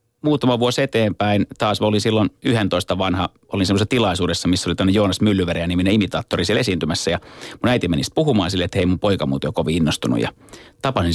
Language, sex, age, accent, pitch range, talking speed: Finnish, male, 30-49, native, 90-110 Hz, 190 wpm